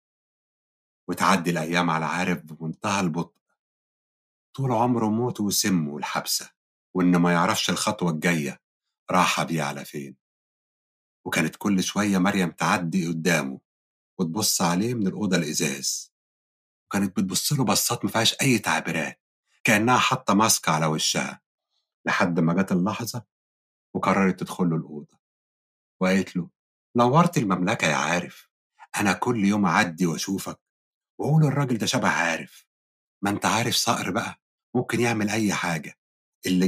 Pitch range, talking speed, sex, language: 80-115 Hz, 125 wpm, male, Arabic